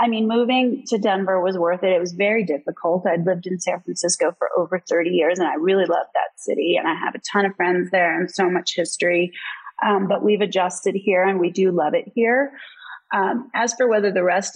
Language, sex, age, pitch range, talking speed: English, female, 30-49, 180-245 Hz, 230 wpm